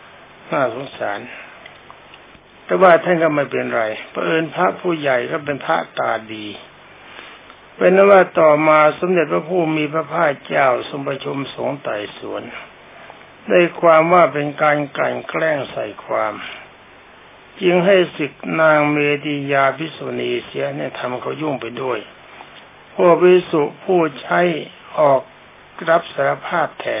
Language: Thai